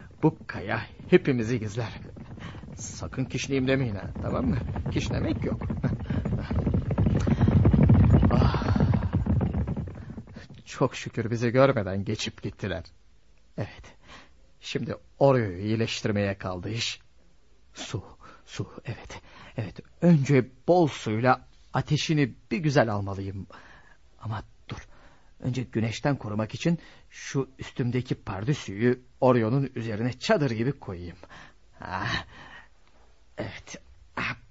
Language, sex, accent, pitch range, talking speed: Turkish, male, native, 105-135 Hz, 85 wpm